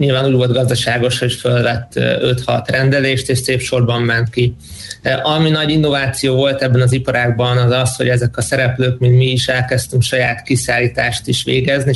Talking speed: 170 wpm